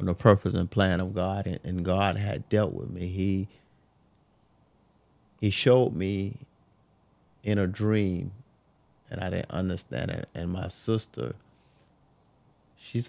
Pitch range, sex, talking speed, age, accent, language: 95-120 Hz, male, 130 wpm, 30-49, American, English